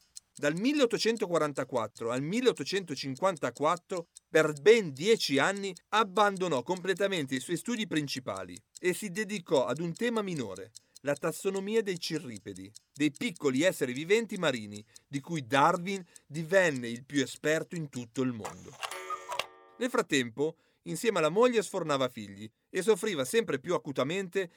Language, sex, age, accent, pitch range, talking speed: Italian, male, 40-59, native, 140-225 Hz, 130 wpm